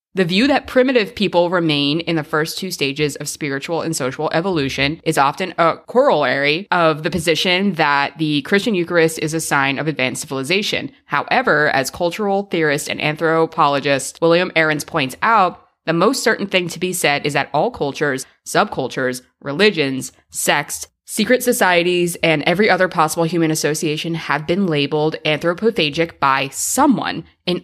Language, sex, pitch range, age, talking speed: English, female, 145-180 Hz, 20-39, 155 wpm